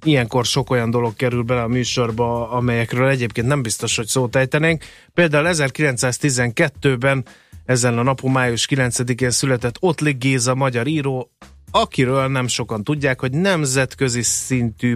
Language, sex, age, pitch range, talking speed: Hungarian, male, 30-49, 110-140 Hz, 135 wpm